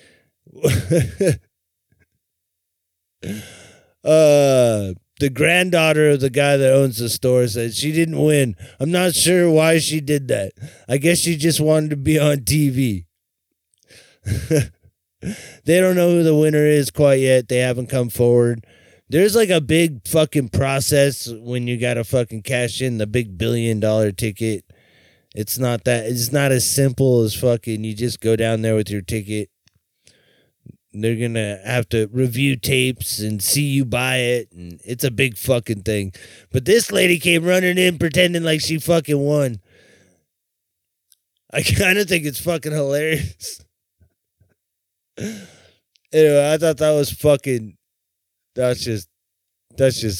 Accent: American